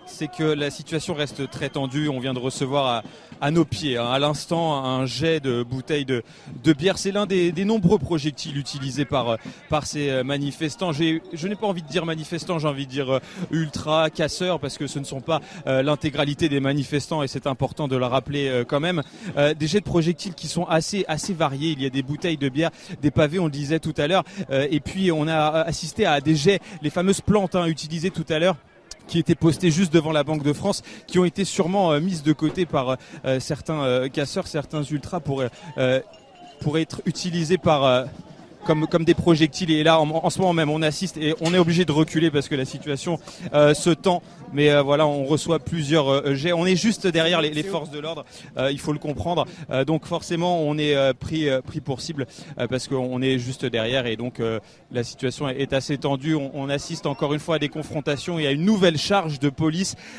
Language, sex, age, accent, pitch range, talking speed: French, male, 30-49, French, 140-170 Hz, 230 wpm